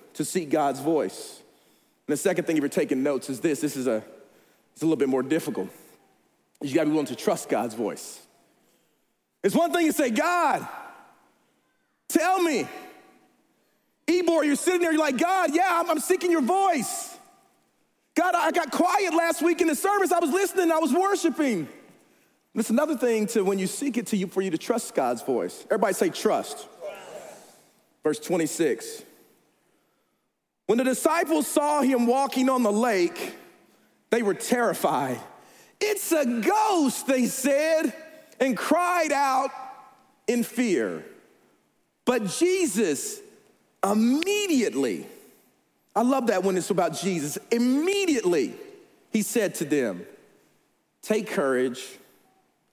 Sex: male